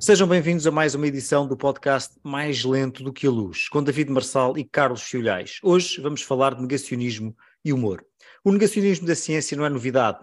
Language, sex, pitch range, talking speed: Portuguese, male, 135-165 Hz, 200 wpm